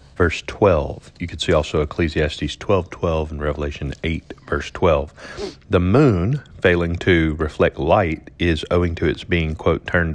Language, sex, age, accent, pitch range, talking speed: English, male, 30-49, American, 80-100 Hz, 160 wpm